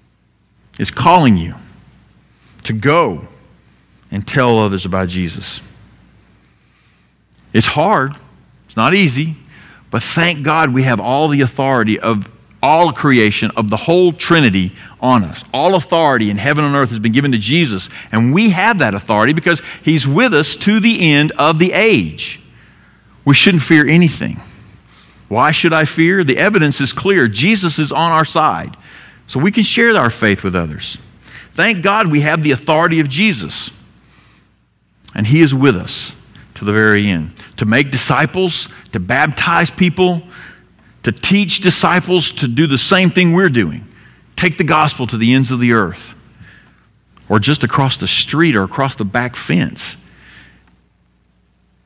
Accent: American